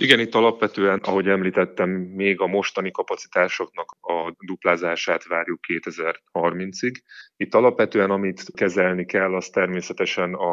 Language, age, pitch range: Hungarian, 30-49, 80-95 Hz